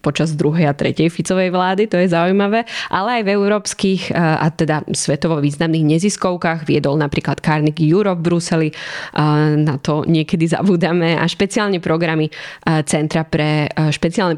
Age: 20-39